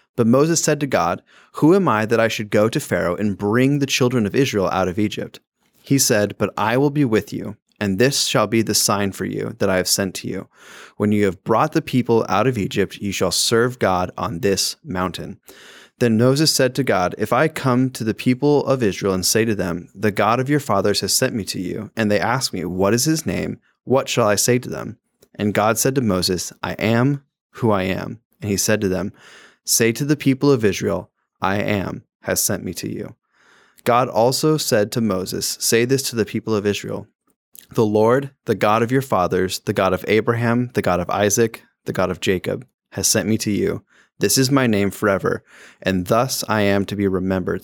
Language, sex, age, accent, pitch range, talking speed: English, male, 20-39, American, 100-130 Hz, 225 wpm